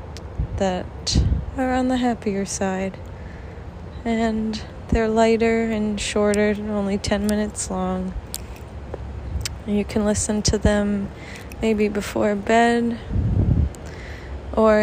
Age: 20-39